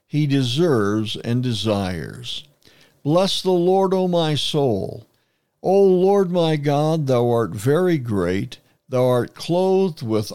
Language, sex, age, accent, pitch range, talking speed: English, male, 60-79, American, 120-160 Hz, 130 wpm